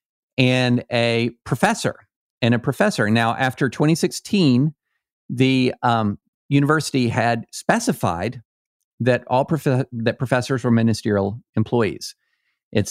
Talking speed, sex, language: 100 wpm, male, English